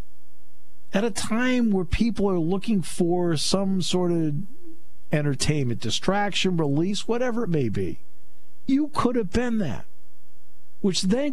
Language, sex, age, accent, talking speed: English, male, 50-69, American, 130 wpm